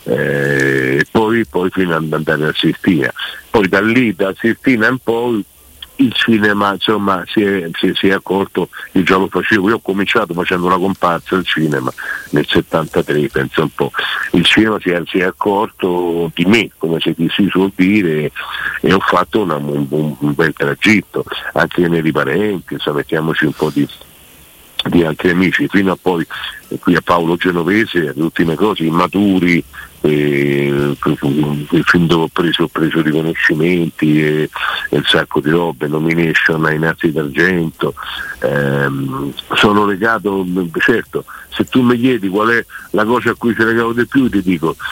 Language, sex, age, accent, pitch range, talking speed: Italian, male, 50-69, native, 80-105 Hz, 160 wpm